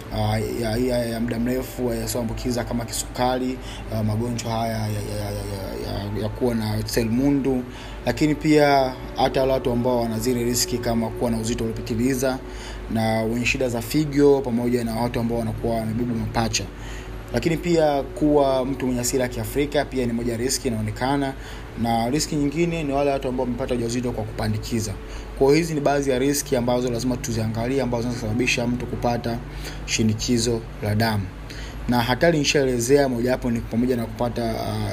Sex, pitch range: male, 115-130 Hz